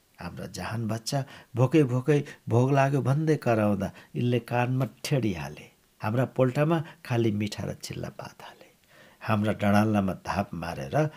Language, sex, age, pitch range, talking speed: English, male, 60-79, 100-130 Hz, 130 wpm